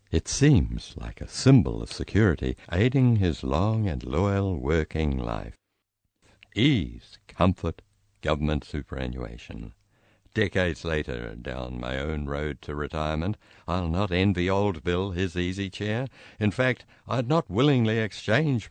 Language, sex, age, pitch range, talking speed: English, male, 60-79, 75-105 Hz, 130 wpm